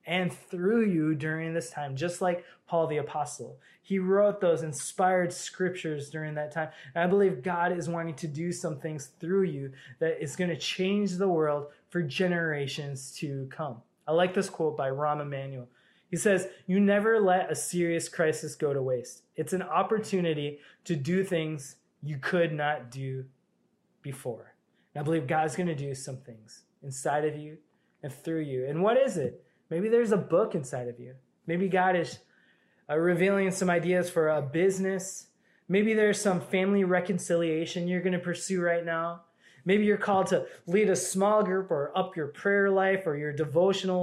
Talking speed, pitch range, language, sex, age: 185 wpm, 150-185 Hz, English, male, 20-39